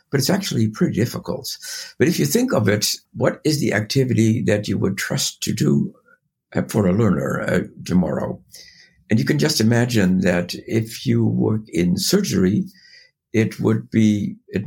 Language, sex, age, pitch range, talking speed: English, male, 60-79, 100-140 Hz, 170 wpm